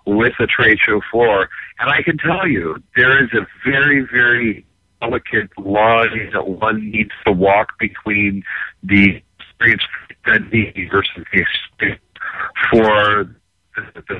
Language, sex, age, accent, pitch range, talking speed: English, male, 50-69, American, 100-120 Hz, 135 wpm